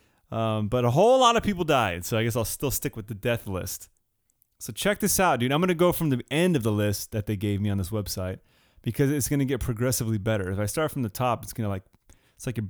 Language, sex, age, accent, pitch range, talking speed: English, male, 30-49, American, 105-145 Hz, 270 wpm